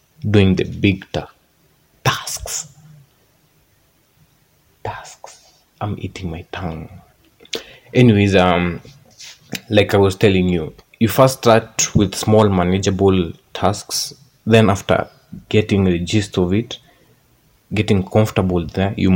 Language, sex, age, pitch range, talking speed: Swahili, male, 30-49, 95-125 Hz, 110 wpm